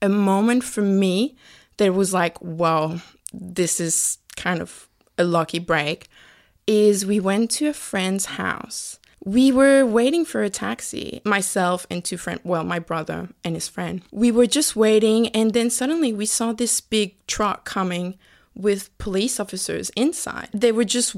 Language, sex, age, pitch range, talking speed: English, female, 20-39, 185-235 Hz, 165 wpm